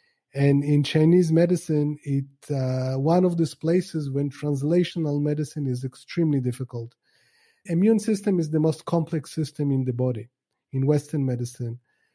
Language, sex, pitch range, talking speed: English, male, 140-185 Hz, 140 wpm